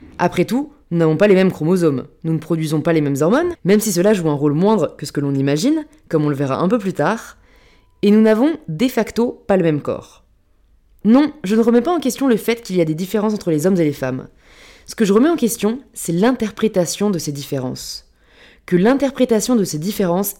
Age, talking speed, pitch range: 20-39, 235 wpm, 160-230 Hz